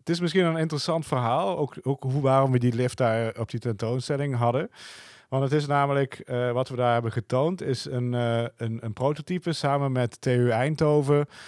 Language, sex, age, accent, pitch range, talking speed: Dutch, male, 40-59, Dutch, 115-135 Hz, 185 wpm